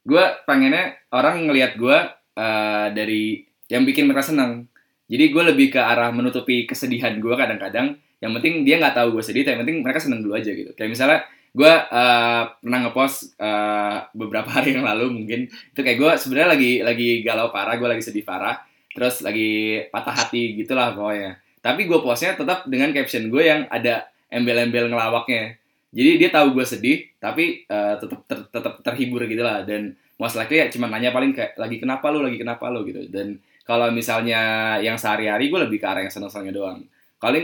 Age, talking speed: 10-29, 185 wpm